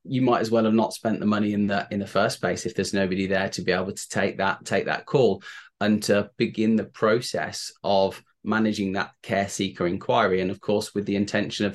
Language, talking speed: English, 235 wpm